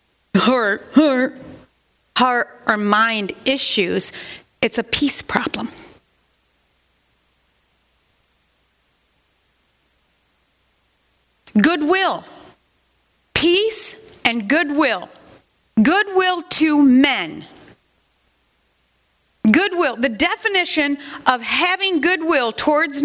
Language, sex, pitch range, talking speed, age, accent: English, female, 220-330 Hz, 60 wpm, 40-59, American